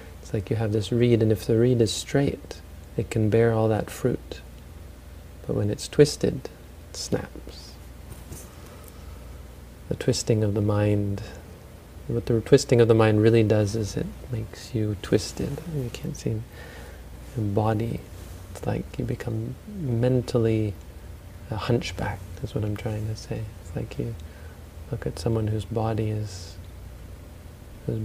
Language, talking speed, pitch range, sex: English, 150 wpm, 85-110 Hz, male